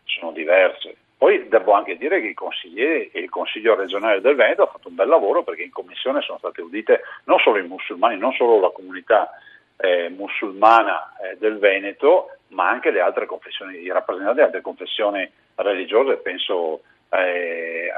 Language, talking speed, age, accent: Italian, 175 wpm, 50-69, native